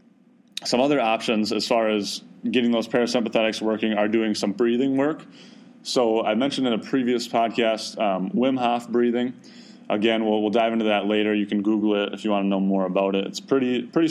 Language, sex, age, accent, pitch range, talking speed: English, male, 20-39, American, 105-120 Hz, 205 wpm